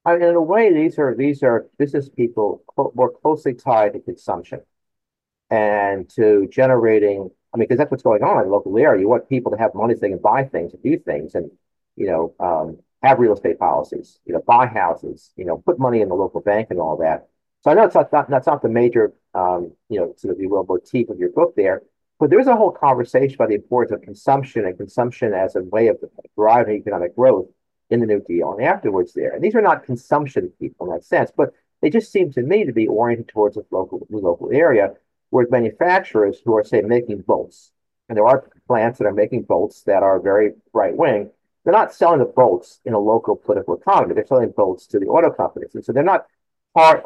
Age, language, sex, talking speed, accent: 50-69, English, male, 230 wpm, American